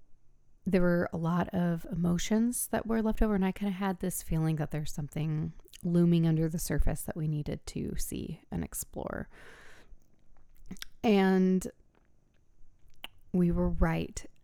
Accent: American